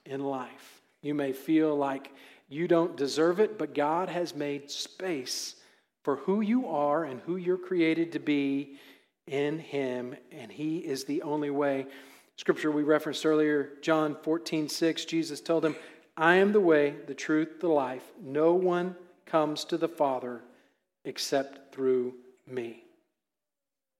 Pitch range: 140-170 Hz